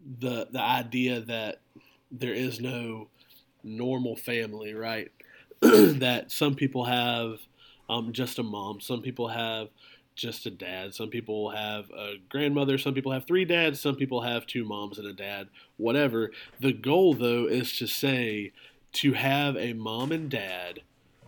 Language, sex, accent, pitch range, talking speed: English, male, American, 115-135 Hz, 155 wpm